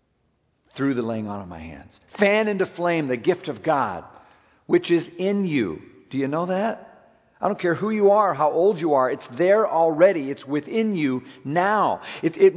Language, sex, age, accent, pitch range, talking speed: English, male, 50-69, American, 160-210 Hz, 195 wpm